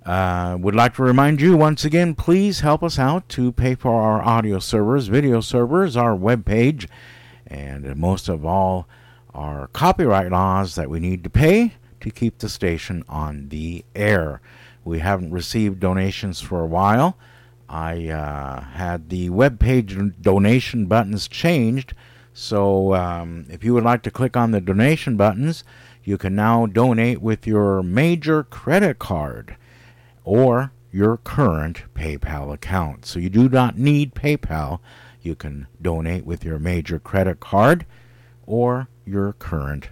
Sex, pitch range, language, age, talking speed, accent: male, 90-125 Hz, English, 50-69, 150 wpm, American